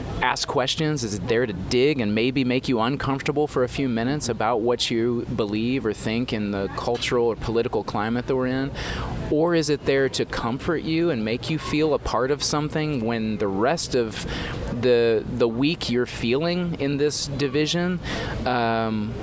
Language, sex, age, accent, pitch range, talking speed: English, male, 30-49, American, 120-160 Hz, 185 wpm